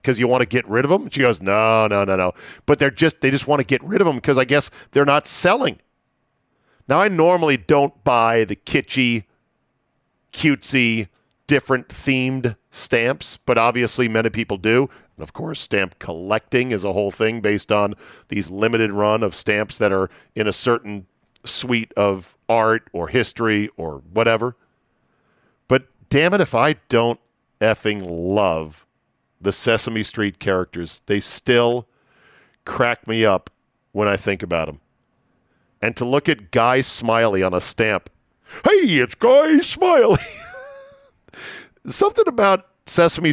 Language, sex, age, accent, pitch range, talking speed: English, male, 40-59, American, 105-140 Hz, 155 wpm